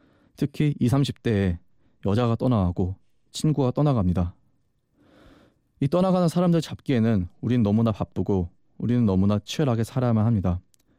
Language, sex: Korean, male